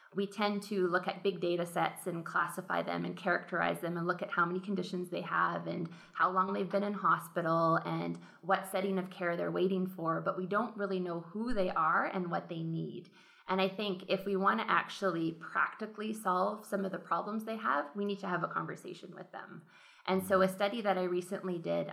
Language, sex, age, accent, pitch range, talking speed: English, female, 20-39, American, 170-195 Hz, 220 wpm